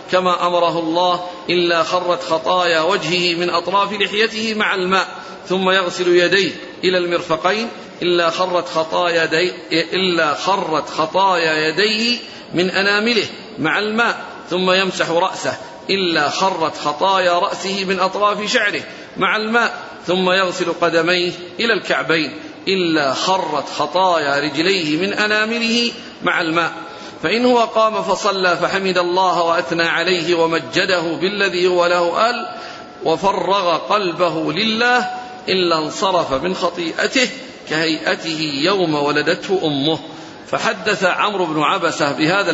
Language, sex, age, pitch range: Arabic, male, 40-59, 170-205 Hz